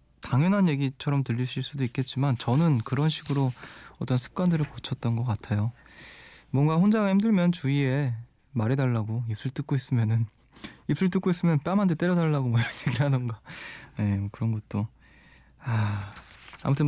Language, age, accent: Korean, 20-39, native